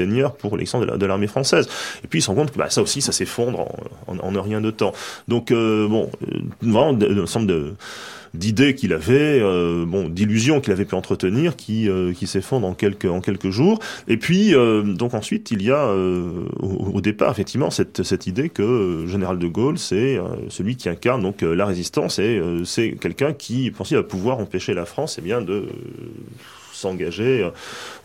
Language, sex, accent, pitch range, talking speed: French, male, French, 90-115 Hz, 200 wpm